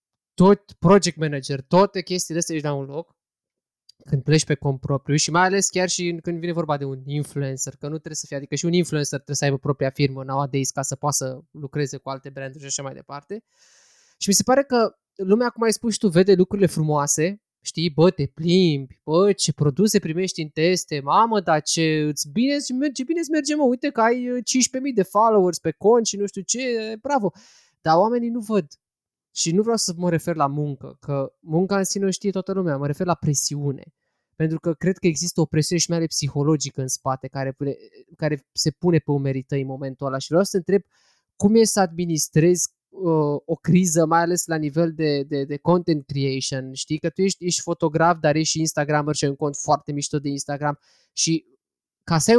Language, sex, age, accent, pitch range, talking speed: Romanian, male, 20-39, native, 145-190 Hz, 215 wpm